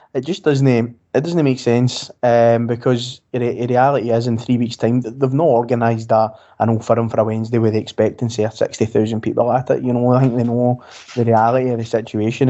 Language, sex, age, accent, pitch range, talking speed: English, male, 20-39, British, 115-130 Hz, 230 wpm